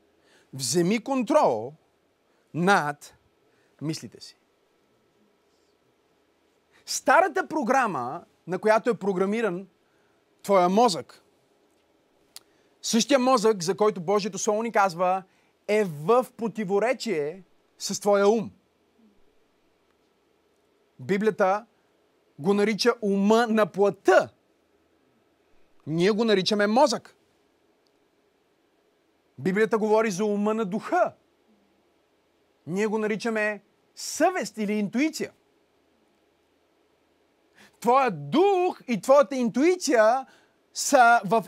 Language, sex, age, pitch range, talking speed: Bulgarian, male, 30-49, 200-315 Hz, 80 wpm